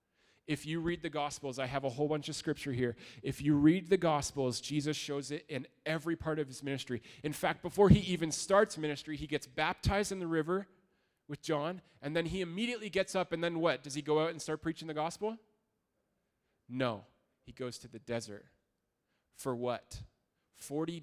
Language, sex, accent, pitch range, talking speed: English, male, American, 130-165 Hz, 195 wpm